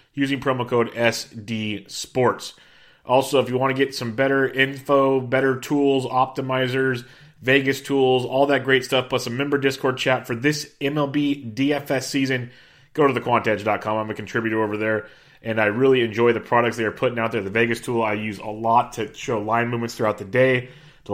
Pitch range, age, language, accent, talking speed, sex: 115-135 Hz, 30-49, English, American, 190 wpm, male